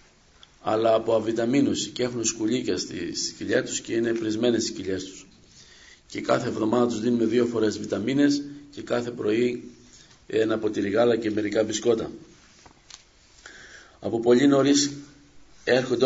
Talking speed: 135 wpm